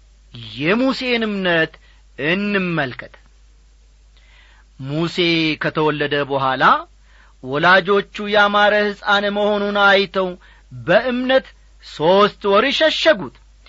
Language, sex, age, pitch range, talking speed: Amharic, male, 40-59, 155-245 Hz, 65 wpm